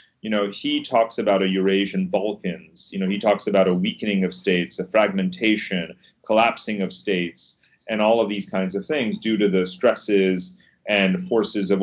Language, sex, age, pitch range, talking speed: English, male, 30-49, 95-110 Hz, 185 wpm